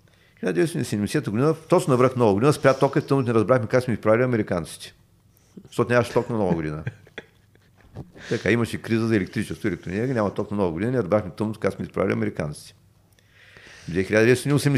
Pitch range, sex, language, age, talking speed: 100-125 Hz, male, Bulgarian, 50-69, 175 wpm